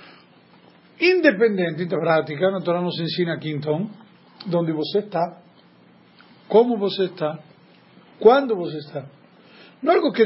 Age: 50-69